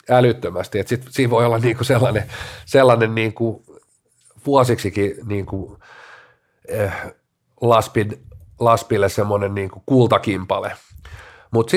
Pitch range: 105-130 Hz